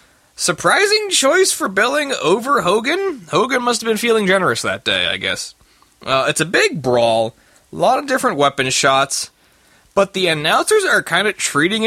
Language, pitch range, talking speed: English, 155-250 Hz, 170 wpm